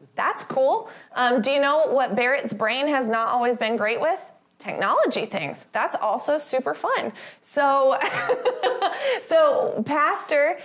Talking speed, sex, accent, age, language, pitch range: 135 wpm, female, American, 20-39, English, 235-300 Hz